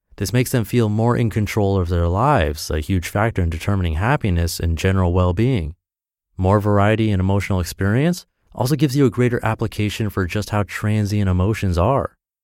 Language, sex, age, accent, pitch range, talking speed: English, male, 30-49, American, 90-125 Hz, 175 wpm